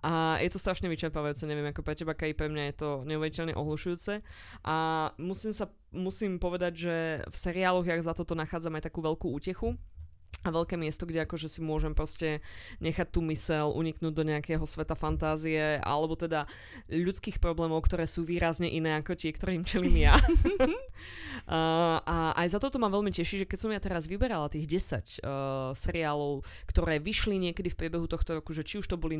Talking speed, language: 180 wpm, Slovak